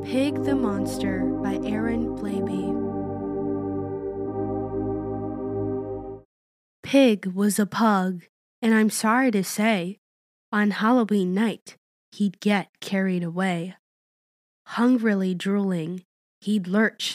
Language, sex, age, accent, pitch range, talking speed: English, female, 20-39, American, 180-220 Hz, 90 wpm